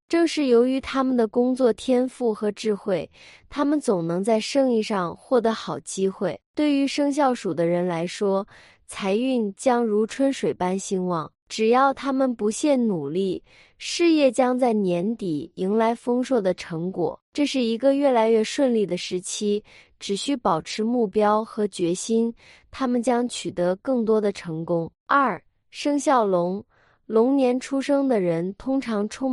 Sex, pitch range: female, 190-260 Hz